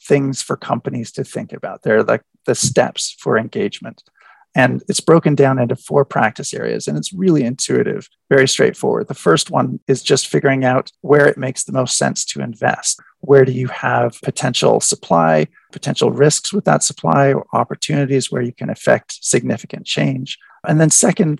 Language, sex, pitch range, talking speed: English, male, 125-150 Hz, 175 wpm